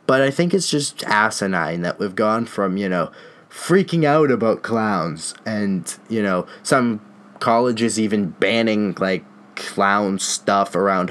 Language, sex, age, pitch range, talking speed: English, male, 20-39, 95-120 Hz, 145 wpm